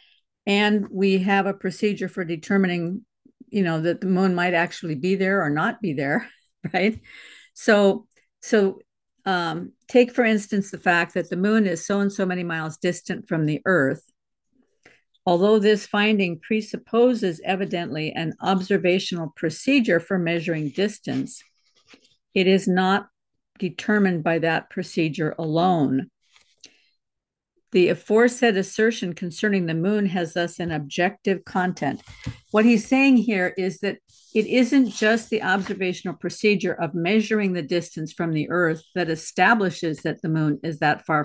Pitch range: 170-215 Hz